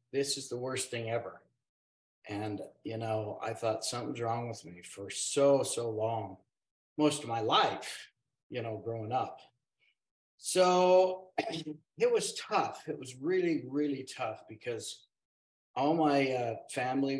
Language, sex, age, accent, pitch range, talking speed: English, male, 50-69, American, 110-140 Hz, 145 wpm